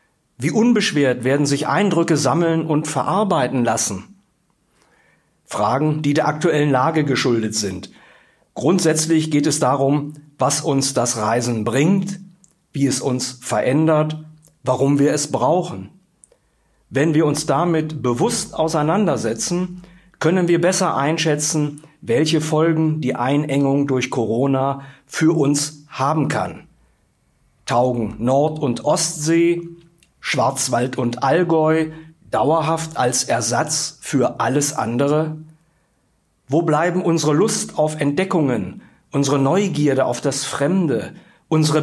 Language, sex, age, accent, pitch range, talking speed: German, male, 50-69, German, 130-160 Hz, 110 wpm